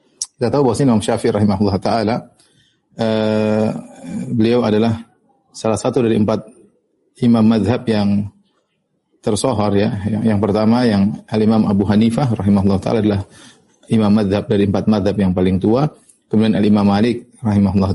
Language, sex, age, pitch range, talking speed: Indonesian, male, 30-49, 100-115 Hz, 135 wpm